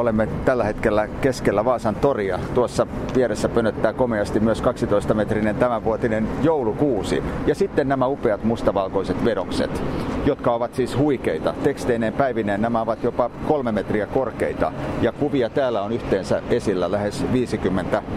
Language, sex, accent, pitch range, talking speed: Finnish, male, native, 100-125 Hz, 130 wpm